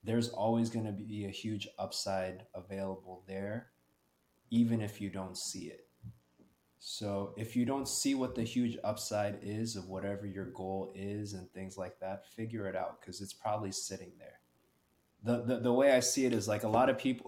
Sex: male